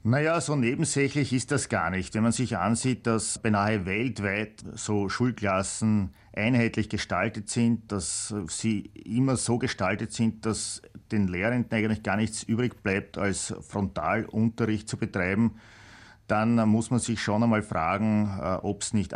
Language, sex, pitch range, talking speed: German, male, 100-115 Hz, 145 wpm